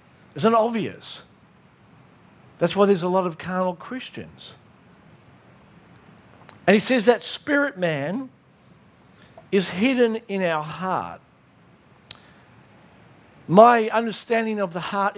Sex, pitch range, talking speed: male, 160-215 Hz, 105 wpm